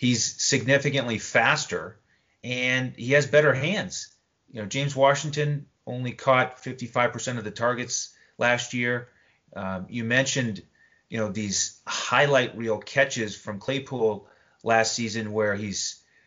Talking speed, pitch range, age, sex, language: 130 wpm, 110-135 Hz, 30-49, male, English